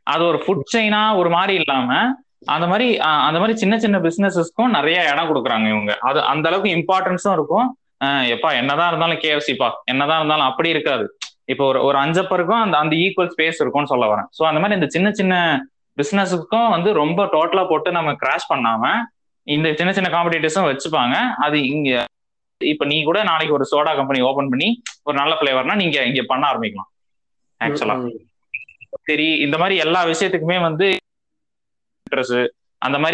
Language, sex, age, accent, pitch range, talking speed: Tamil, male, 20-39, native, 145-195 Hz, 110 wpm